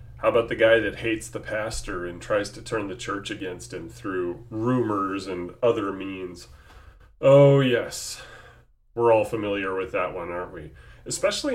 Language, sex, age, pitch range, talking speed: English, male, 30-49, 110-140 Hz, 165 wpm